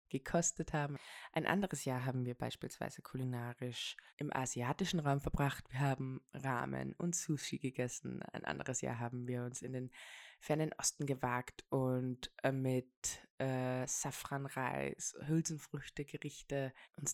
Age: 20-39